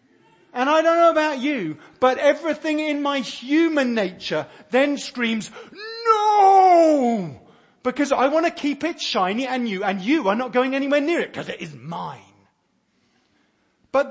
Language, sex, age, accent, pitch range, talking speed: English, male, 40-59, British, 190-285 Hz, 155 wpm